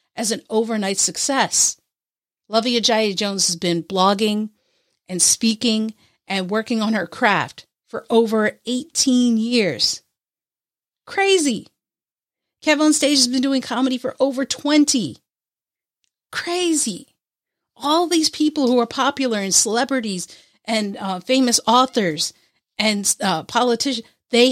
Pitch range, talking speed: 210-270 Hz, 120 wpm